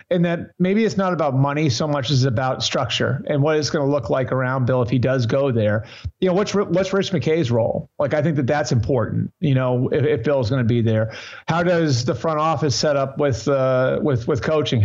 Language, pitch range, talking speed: English, 125-155 Hz, 245 wpm